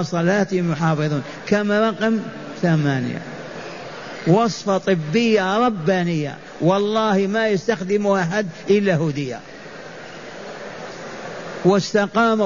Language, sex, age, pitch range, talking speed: Arabic, male, 50-69, 185-215 Hz, 70 wpm